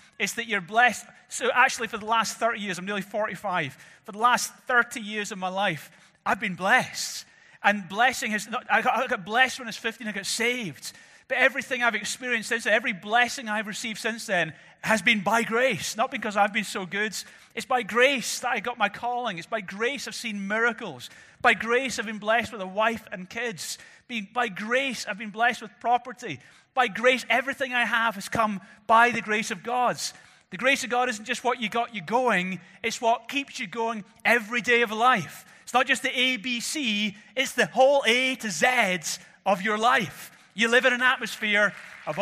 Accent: British